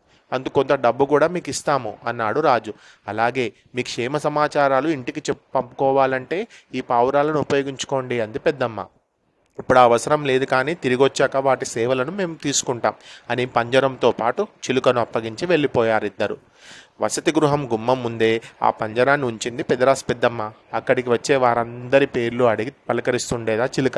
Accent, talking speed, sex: native, 130 wpm, male